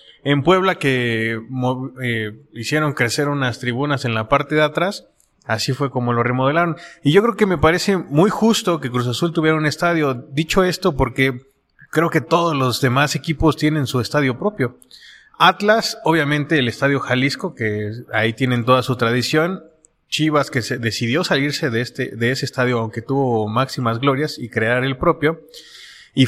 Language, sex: Spanish, male